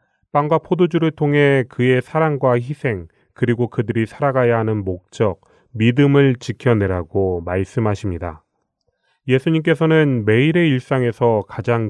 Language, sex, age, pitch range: Korean, male, 30-49, 100-140 Hz